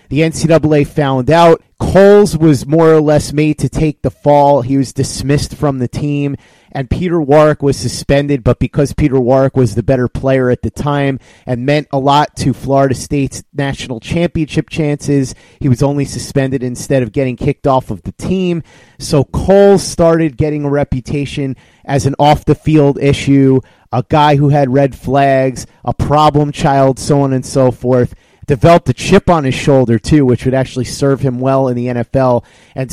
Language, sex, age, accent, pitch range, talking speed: English, male, 30-49, American, 130-150 Hz, 180 wpm